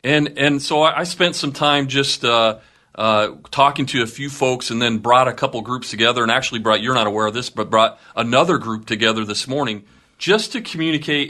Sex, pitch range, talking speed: male, 105-140 Hz, 210 wpm